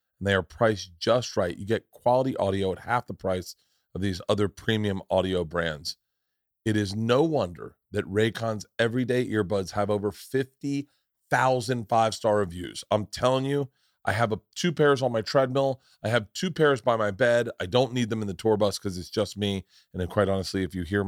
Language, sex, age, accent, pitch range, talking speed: English, male, 40-59, American, 100-135 Hz, 195 wpm